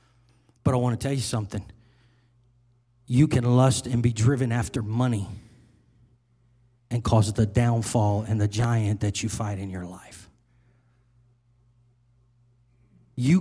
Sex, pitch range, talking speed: male, 120-150 Hz, 130 wpm